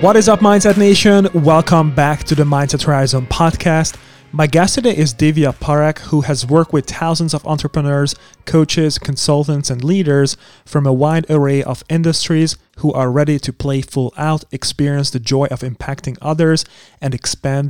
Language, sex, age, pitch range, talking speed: English, male, 30-49, 140-160 Hz, 170 wpm